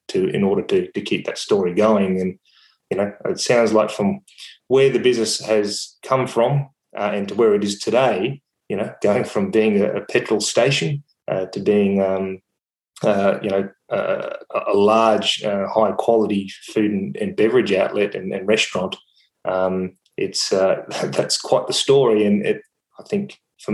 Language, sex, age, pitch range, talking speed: English, male, 20-39, 100-120 Hz, 180 wpm